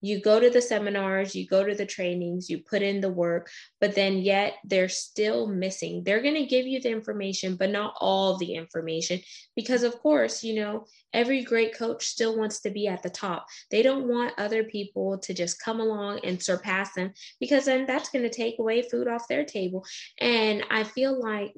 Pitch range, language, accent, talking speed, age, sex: 175-215 Hz, English, American, 210 wpm, 20-39, female